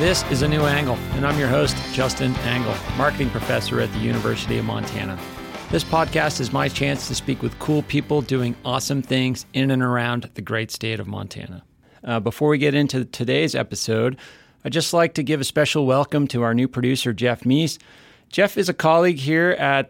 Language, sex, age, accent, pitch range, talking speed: English, male, 40-59, American, 115-140 Hz, 200 wpm